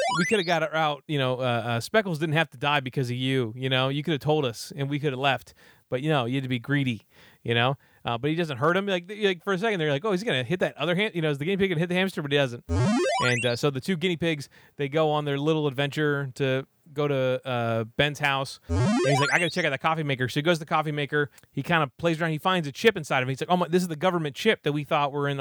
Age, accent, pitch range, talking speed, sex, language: 30-49, American, 135-165 Hz, 325 wpm, male, English